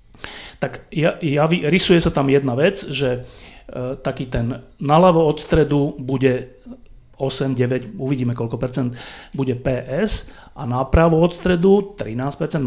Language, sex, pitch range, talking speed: Slovak, male, 125-155 Hz, 140 wpm